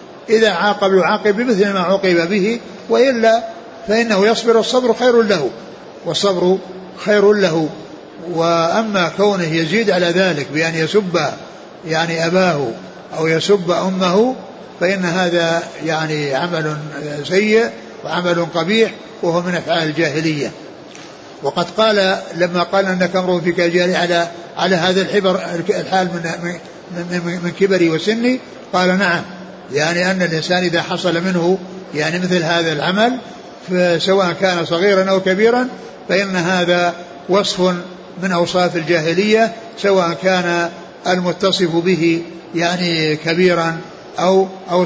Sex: male